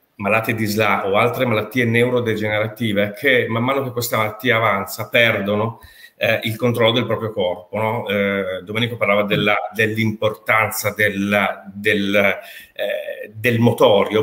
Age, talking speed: 40-59, 135 wpm